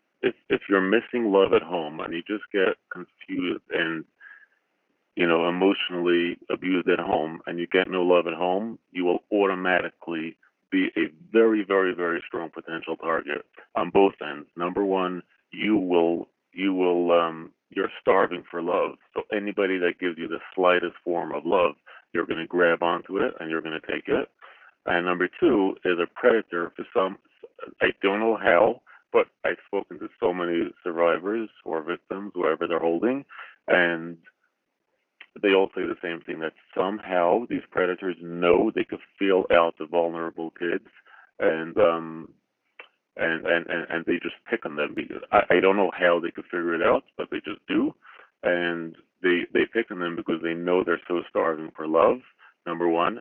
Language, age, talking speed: English, 40-59, 180 wpm